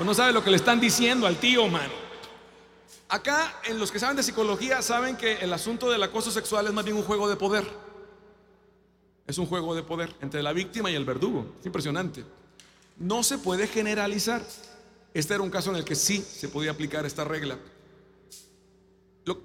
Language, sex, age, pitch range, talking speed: Spanish, male, 40-59, 175-225 Hz, 190 wpm